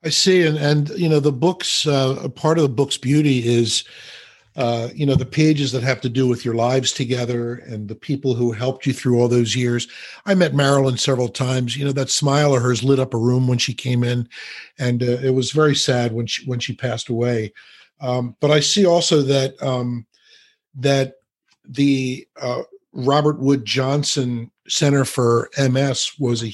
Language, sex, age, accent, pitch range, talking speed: English, male, 50-69, American, 120-140 Hz, 200 wpm